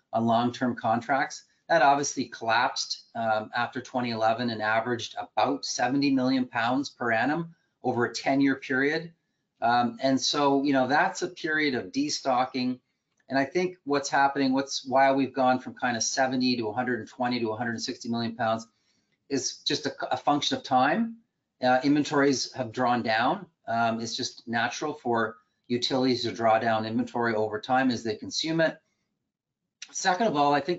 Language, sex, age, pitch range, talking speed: English, male, 30-49, 115-135 Hz, 160 wpm